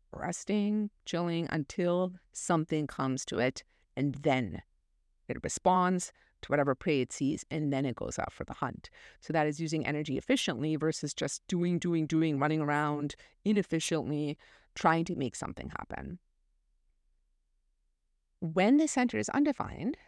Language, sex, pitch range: English, female, 145-185 Hz